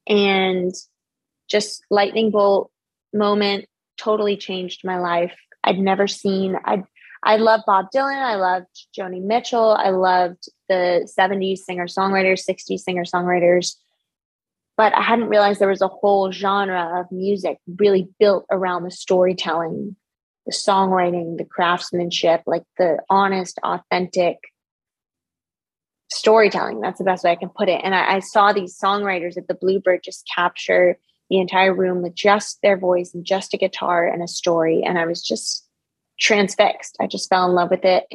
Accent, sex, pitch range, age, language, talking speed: American, female, 180-200 Hz, 20-39, English, 155 wpm